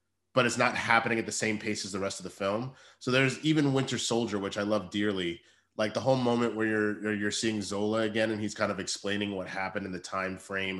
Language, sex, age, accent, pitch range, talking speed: English, male, 30-49, American, 105-125 Hz, 245 wpm